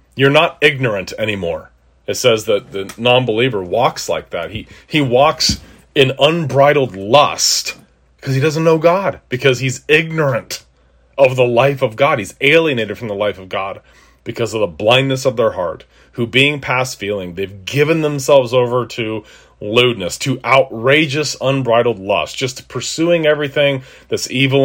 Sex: male